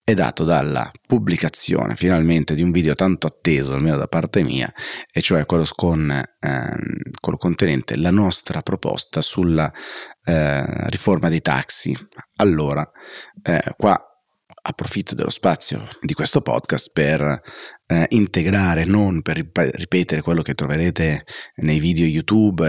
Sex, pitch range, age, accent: male, 75-90 Hz, 30-49, native